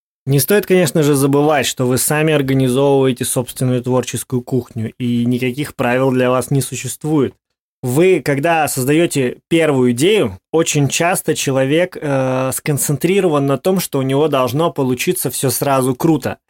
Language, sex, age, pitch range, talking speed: Russian, male, 20-39, 125-150 Hz, 140 wpm